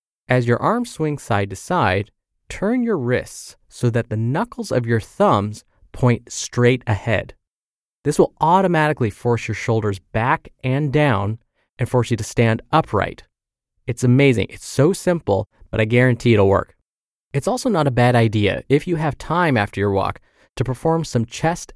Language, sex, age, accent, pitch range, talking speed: English, male, 20-39, American, 105-140 Hz, 170 wpm